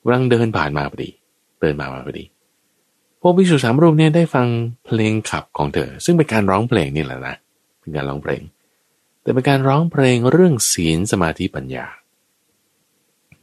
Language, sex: Thai, male